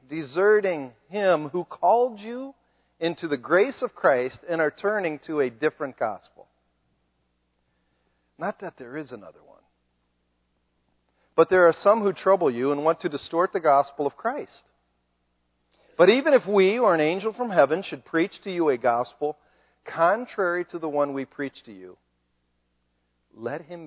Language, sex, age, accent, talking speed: English, male, 50-69, American, 160 wpm